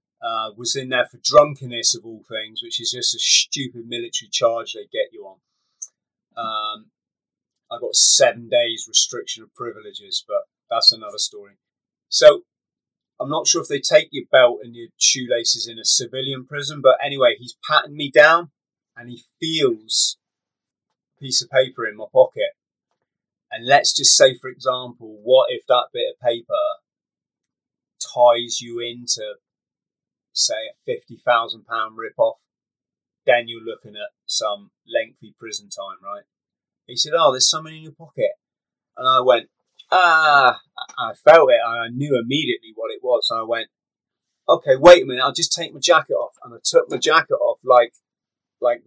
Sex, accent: male, British